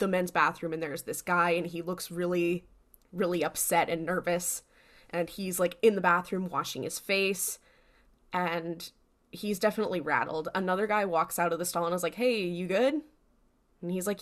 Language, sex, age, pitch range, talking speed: English, female, 10-29, 175-220 Hz, 185 wpm